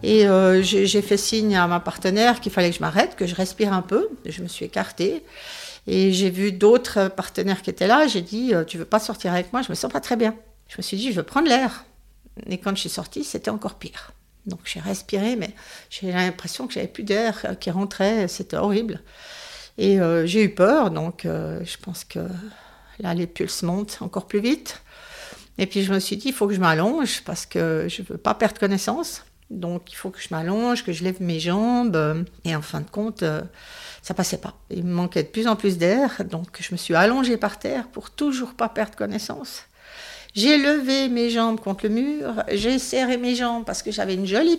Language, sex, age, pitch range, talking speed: French, female, 60-79, 185-245 Hz, 235 wpm